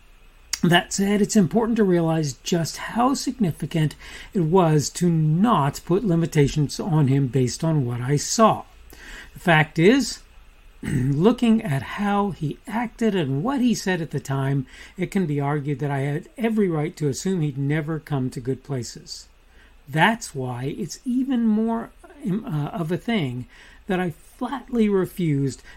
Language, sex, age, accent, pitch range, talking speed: English, male, 50-69, American, 140-205 Hz, 155 wpm